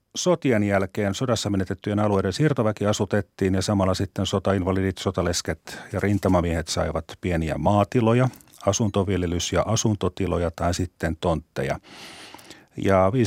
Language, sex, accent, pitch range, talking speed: Finnish, male, native, 90-115 Hz, 110 wpm